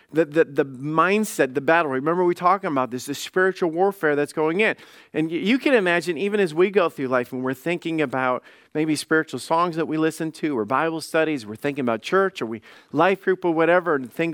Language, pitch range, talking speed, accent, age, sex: English, 150-205 Hz, 225 wpm, American, 40-59, male